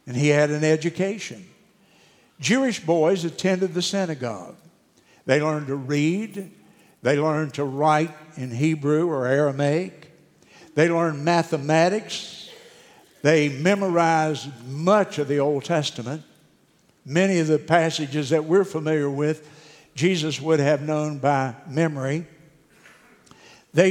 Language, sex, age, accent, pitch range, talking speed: English, male, 60-79, American, 145-180 Hz, 120 wpm